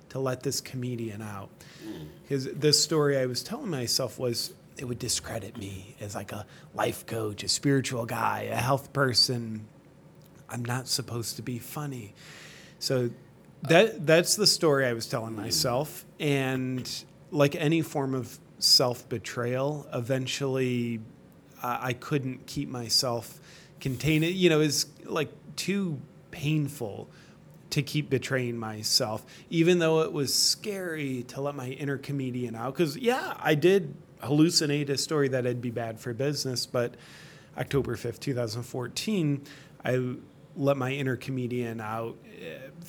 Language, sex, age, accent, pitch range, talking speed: English, male, 30-49, American, 120-150 Hz, 145 wpm